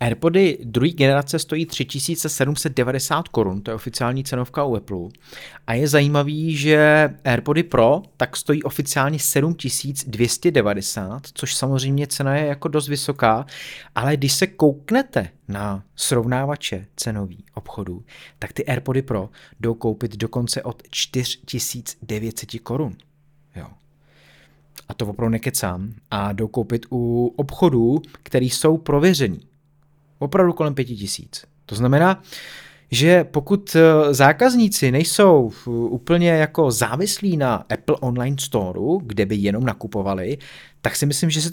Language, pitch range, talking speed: Czech, 115-155 Hz, 125 wpm